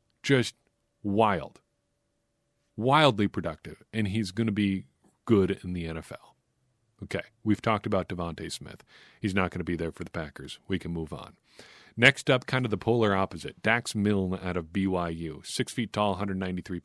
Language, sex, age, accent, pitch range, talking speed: English, male, 40-59, American, 90-115 Hz, 170 wpm